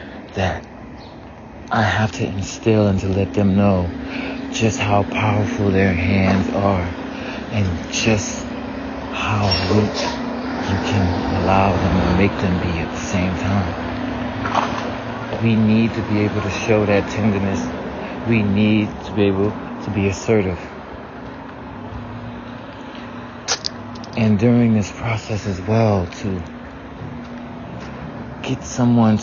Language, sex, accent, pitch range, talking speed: English, male, American, 95-115 Hz, 115 wpm